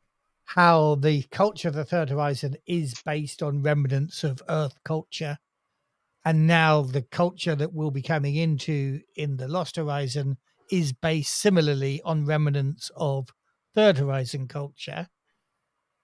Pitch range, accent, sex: 145-180 Hz, British, male